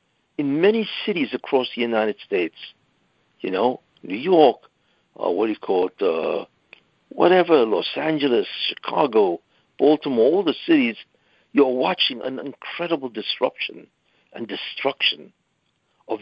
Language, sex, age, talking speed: English, male, 60-79, 125 wpm